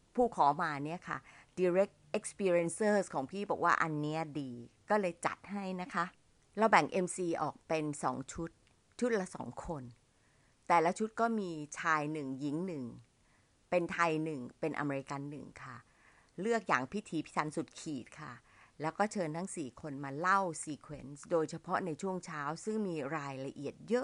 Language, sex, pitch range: Thai, female, 145-195 Hz